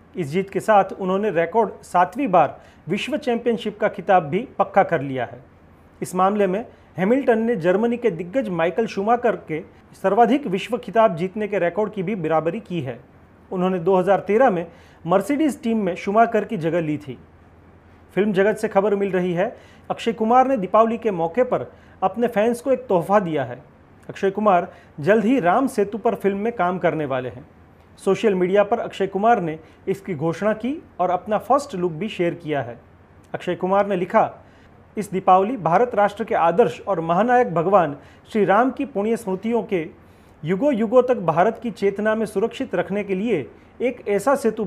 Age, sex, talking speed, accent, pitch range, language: 40-59, male, 180 wpm, native, 170-225 Hz, Hindi